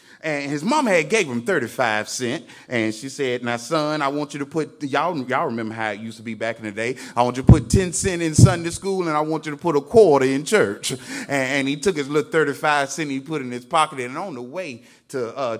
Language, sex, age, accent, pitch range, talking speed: English, male, 30-49, American, 120-170 Hz, 275 wpm